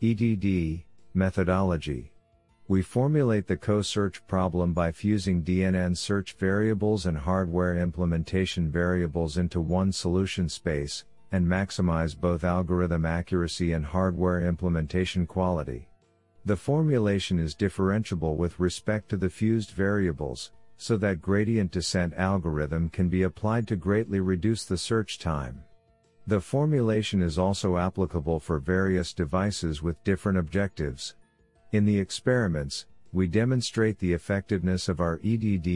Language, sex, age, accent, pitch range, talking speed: English, male, 50-69, American, 85-100 Hz, 125 wpm